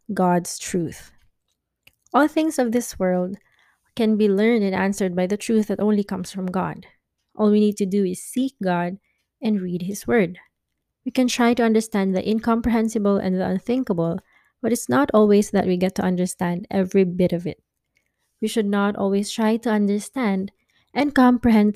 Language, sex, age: English, female, 20-39